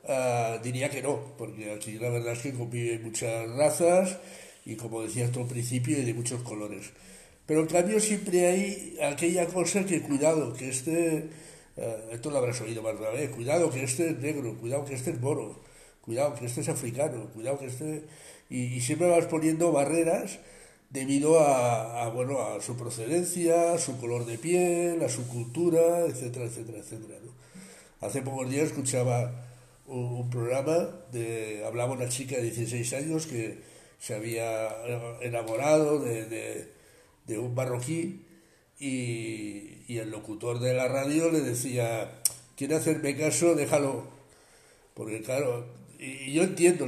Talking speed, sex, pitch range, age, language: 160 wpm, male, 120-160 Hz, 60-79, Spanish